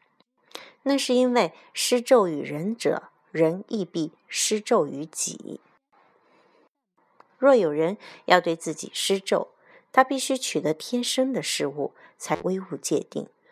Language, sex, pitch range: Chinese, female, 160-230 Hz